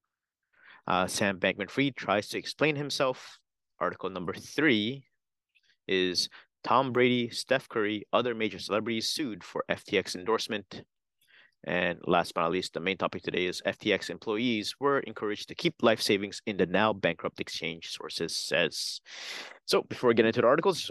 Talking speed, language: 160 wpm, English